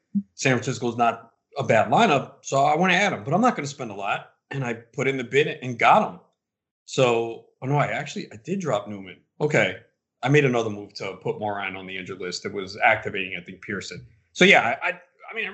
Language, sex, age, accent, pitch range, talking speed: English, male, 30-49, American, 110-180 Hz, 245 wpm